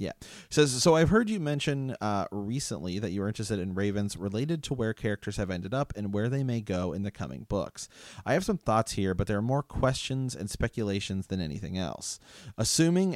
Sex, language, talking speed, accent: male, English, 215 wpm, American